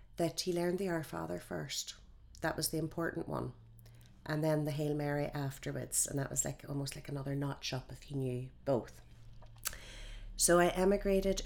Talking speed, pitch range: 175 wpm, 130-175 Hz